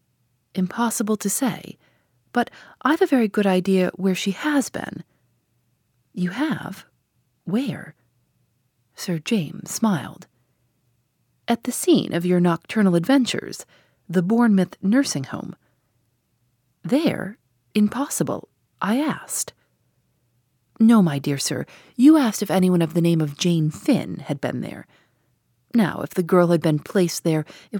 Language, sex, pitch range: English, female, 145-235 Hz